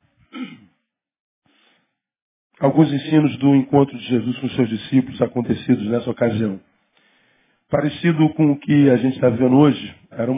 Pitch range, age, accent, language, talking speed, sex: 130-160 Hz, 40-59, Brazilian, Portuguese, 125 wpm, male